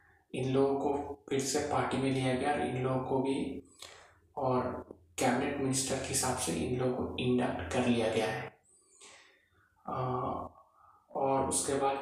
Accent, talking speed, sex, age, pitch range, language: native, 150 wpm, male, 20-39, 105-135 Hz, Hindi